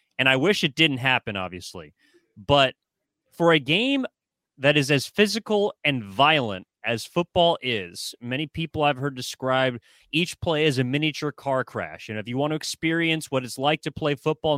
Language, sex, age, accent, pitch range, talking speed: English, male, 30-49, American, 130-160 Hz, 180 wpm